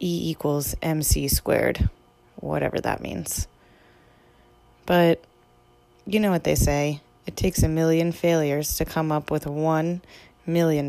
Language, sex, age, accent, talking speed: English, female, 20-39, American, 140 wpm